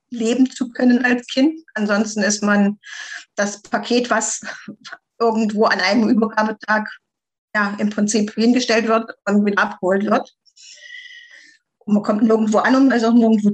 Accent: German